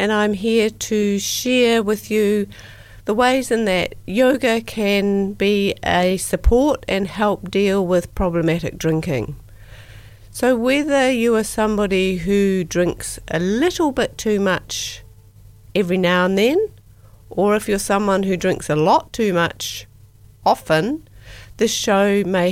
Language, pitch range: English, 145-210 Hz